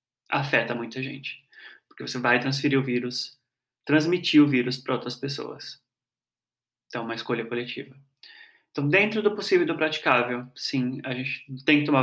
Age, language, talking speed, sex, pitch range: 20-39, Portuguese, 165 wpm, male, 125-150 Hz